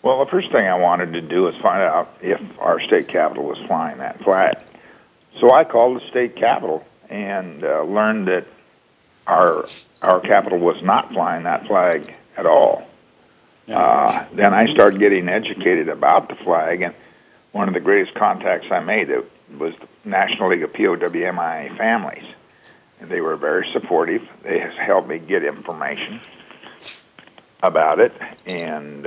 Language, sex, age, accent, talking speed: English, male, 60-79, American, 160 wpm